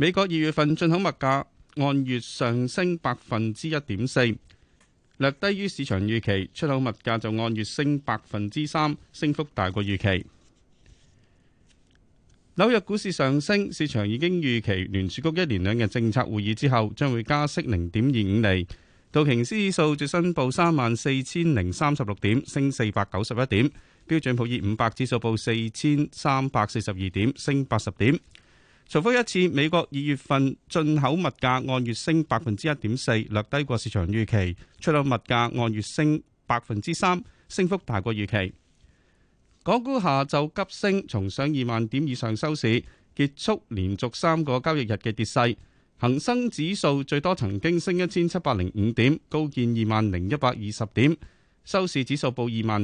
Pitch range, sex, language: 110-155 Hz, male, Chinese